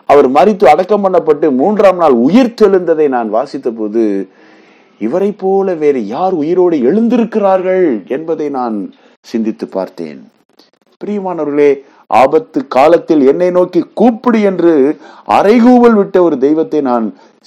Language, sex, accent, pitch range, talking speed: Tamil, male, native, 110-185 Hz, 105 wpm